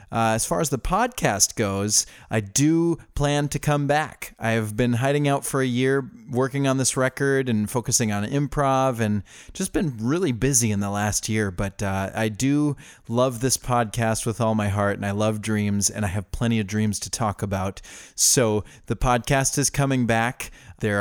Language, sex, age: English, male, 30-49